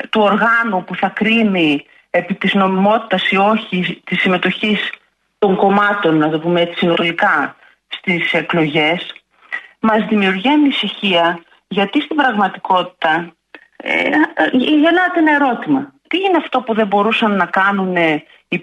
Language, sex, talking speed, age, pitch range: Greek, female, 130 wpm, 40-59, 185-270 Hz